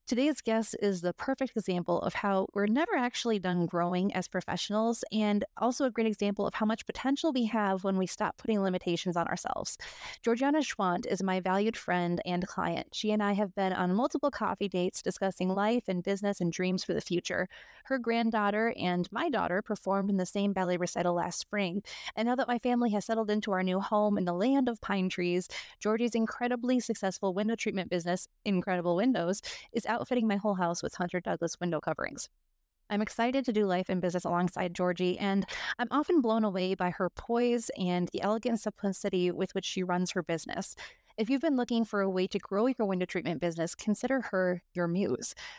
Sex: female